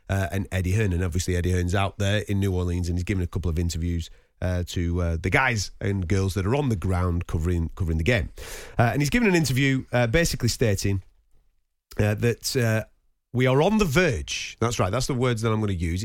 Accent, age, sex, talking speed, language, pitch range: British, 30-49, male, 235 wpm, English, 90-120 Hz